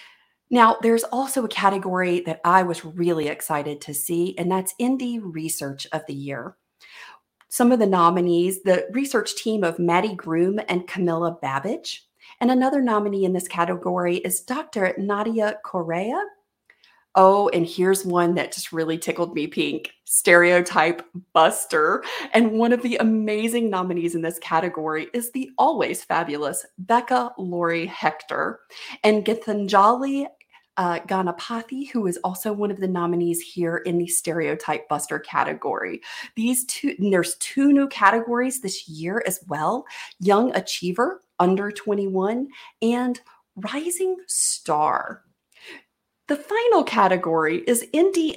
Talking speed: 135 wpm